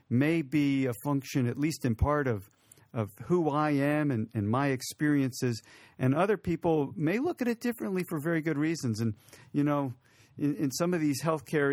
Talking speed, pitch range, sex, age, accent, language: 195 wpm, 120-150 Hz, male, 50-69, American, English